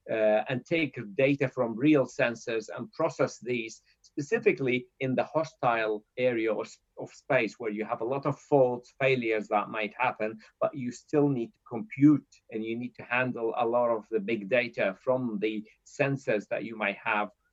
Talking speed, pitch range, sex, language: 180 wpm, 115-145 Hz, male, English